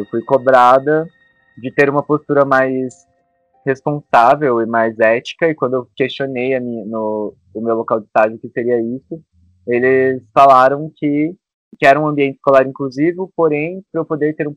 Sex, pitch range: male, 115-145 Hz